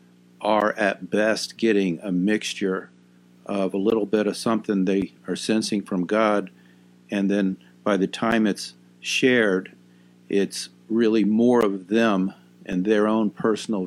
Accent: American